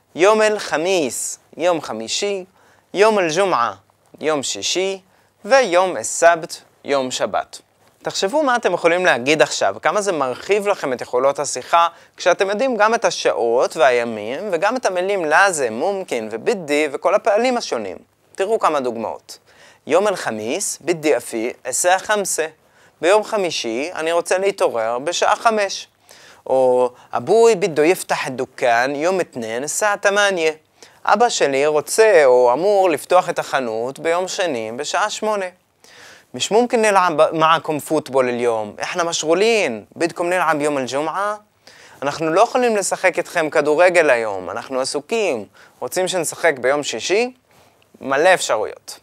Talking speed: 120 wpm